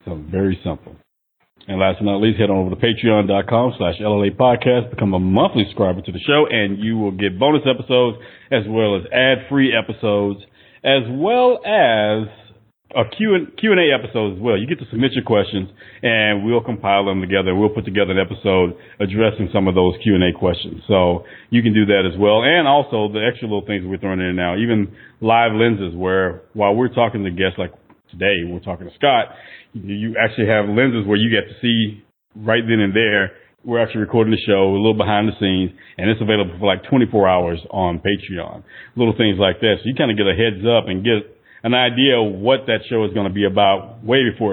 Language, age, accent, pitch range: English, 40-59, American, 95-115 Hz